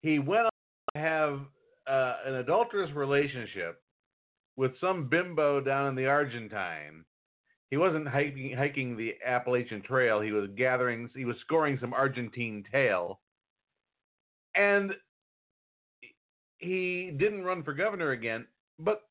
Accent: American